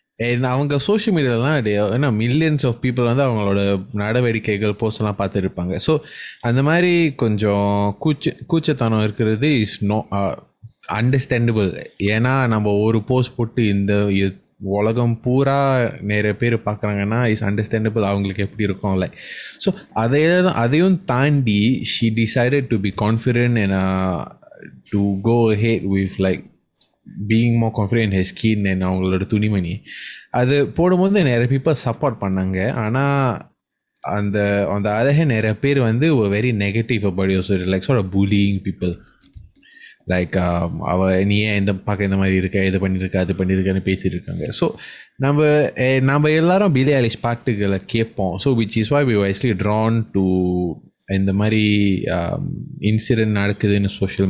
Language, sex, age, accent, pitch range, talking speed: Tamil, male, 20-39, native, 100-130 Hz, 140 wpm